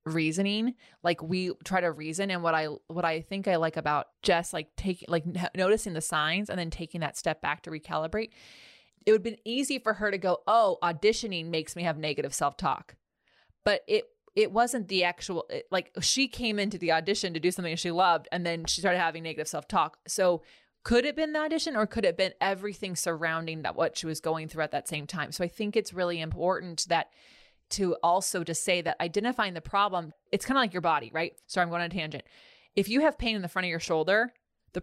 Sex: female